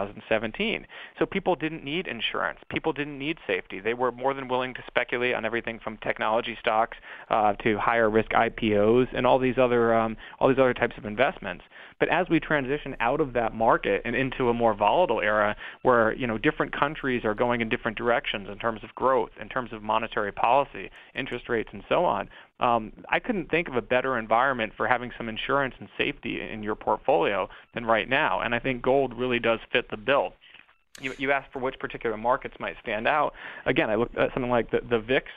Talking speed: 210 wpm